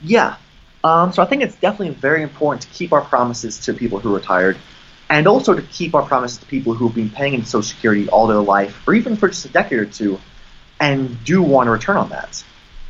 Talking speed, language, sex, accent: 235 wpm, English, male, American